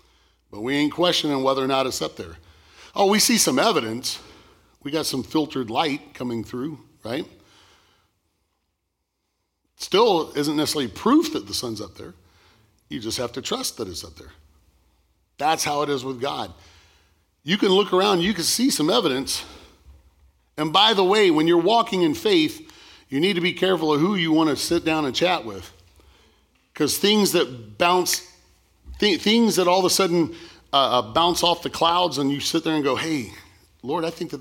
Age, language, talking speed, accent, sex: 40-59, English, 185 wpm, American, male